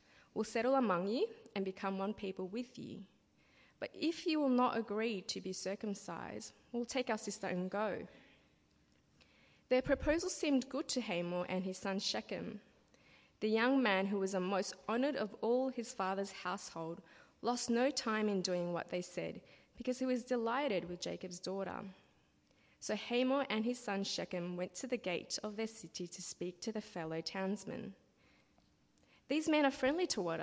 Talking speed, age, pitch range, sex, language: 170 wpm, 20-39, 185-245 Hz, female, English